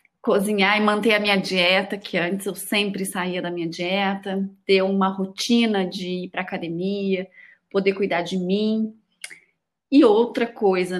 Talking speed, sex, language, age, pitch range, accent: 160 wpm, female, Portuguese, 30-49, 190-225 Hz, Brazilian